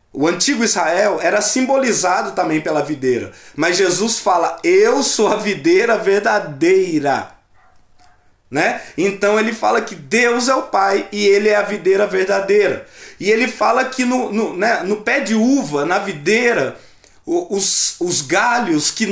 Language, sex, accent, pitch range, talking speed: Portuguese, male, Brazilian, 200-265 Hz, 145 wpm